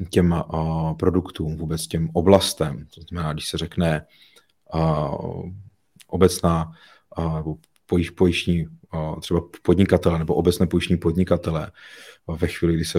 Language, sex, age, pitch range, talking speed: Czech, male, 30-49, 85-95 Hz, 95 wpm